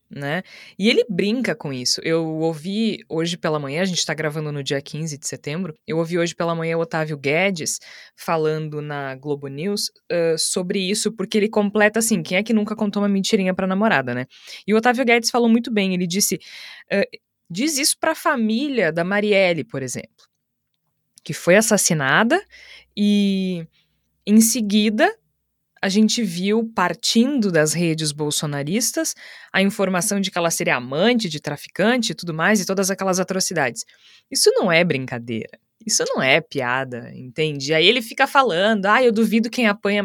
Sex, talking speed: female, 170 wpm